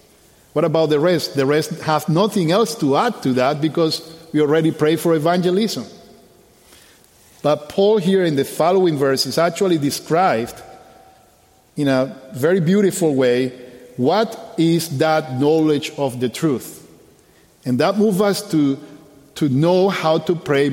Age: 50-69